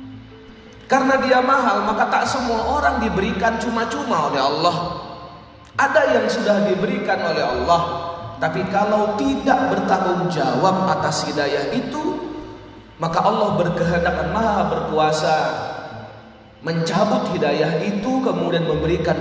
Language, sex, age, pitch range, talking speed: Indonesian, male, 30-49, 155-195 Hz, 110 wpm